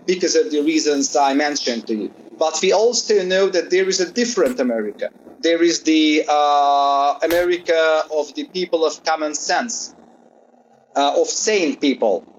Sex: male